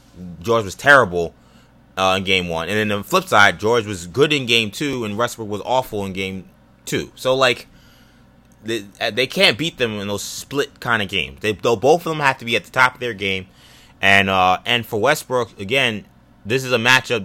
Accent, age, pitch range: American, 20-39, 95-125 Hz